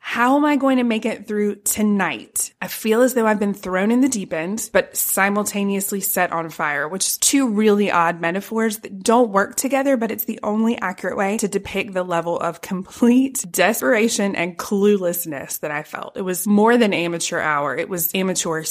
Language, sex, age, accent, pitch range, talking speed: English, female, 20-39, American, 175-225 Hz, 200 wpm